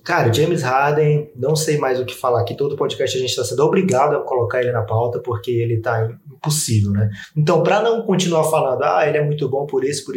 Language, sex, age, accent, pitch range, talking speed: Portuguese, male, 20-39, Brazilian, 120-165 Hz, 240 wpm